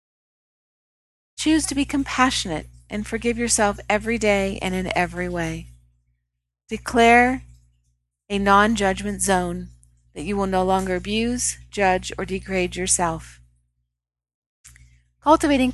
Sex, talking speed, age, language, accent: female, 110 wpm, 40-59, English, American